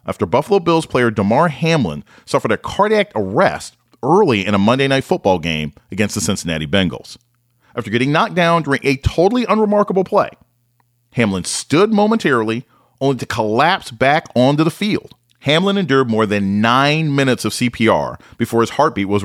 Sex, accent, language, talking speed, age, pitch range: male, American, English, 160 wpm, 40-59, 110-170 Hz